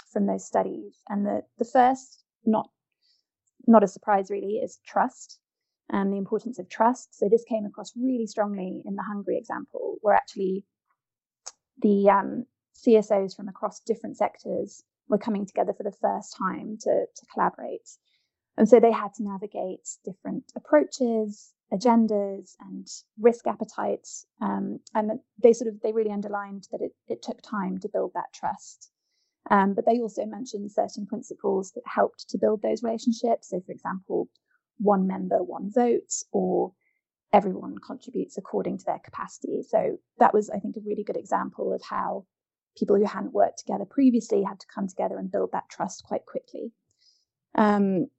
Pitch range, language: 205-245 Hz, English